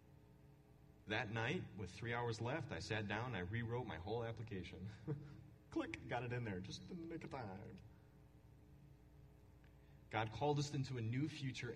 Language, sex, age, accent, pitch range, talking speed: English, male, 30-49, American, 105-140 Hz, 170 wpm